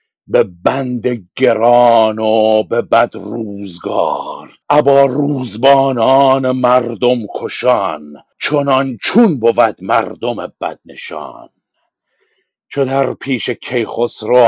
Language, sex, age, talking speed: Persian, male, 60-79, 85 wpm